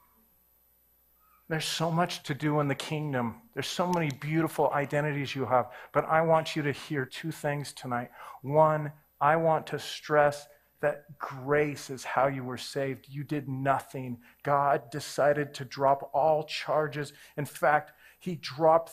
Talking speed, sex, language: 155 wpm, male, English